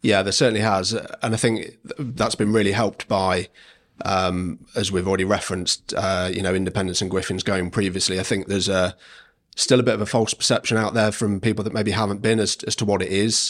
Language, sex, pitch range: English, male, 95-110 Hz